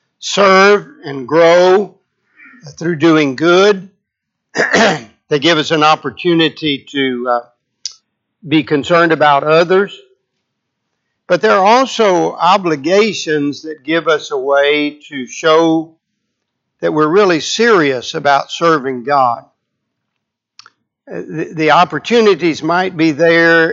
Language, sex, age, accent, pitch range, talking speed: English, male, 50-69, American, 140-180 Hz, 105 wpm